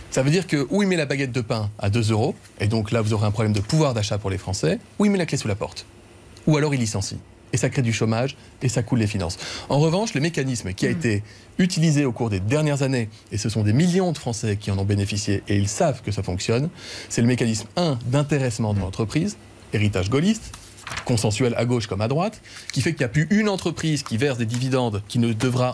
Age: 30-49